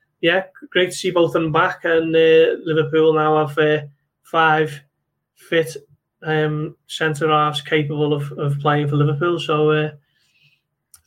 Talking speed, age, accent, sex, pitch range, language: 140 wpm, 20-39, British, male, 145-160 Hz, English